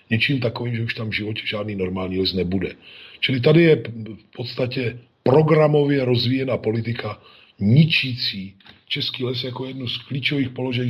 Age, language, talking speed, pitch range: 40-59, Slovak, 150 wpm, 110-130 Hz